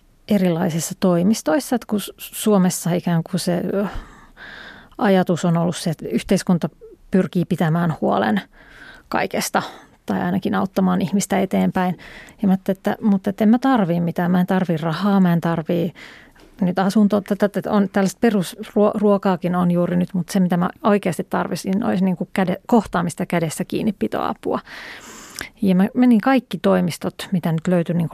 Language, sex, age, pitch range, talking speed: Finnish, female, 30-49, 175-205 Hz, 150 wpm